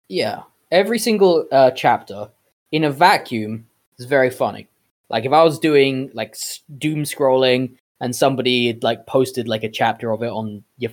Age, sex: 20-39, male